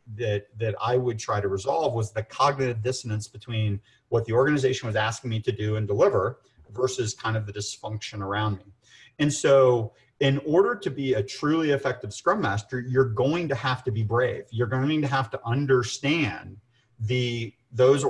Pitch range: 110-135 Hz